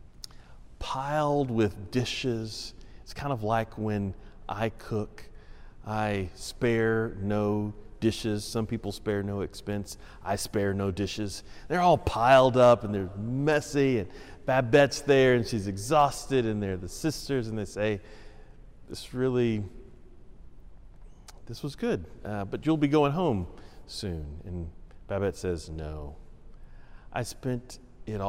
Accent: American